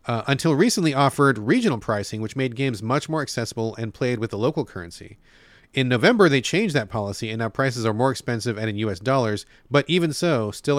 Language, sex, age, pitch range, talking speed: English, male, 30-49, 110-140 Hz, 210 wpm